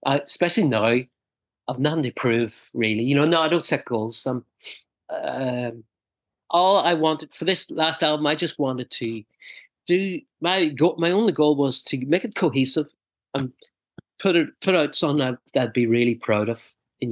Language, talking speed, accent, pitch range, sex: English, 180 wpm, British, 115-155 Hz, male